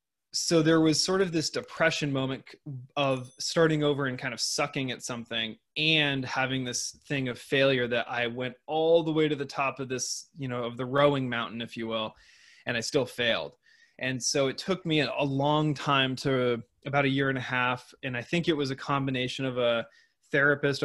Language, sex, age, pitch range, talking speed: English, male, 20-39, 125-145 Hz, 205 wpm